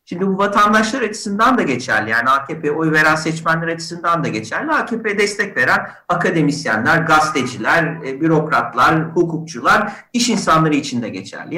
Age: 50-69